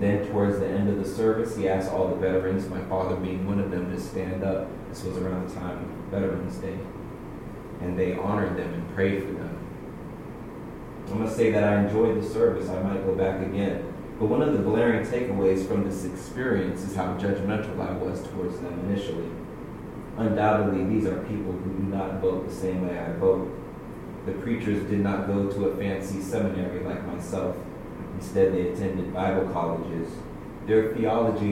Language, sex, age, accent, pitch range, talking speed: English, male, 30-49, American, 95-105 Hz, 185 wpm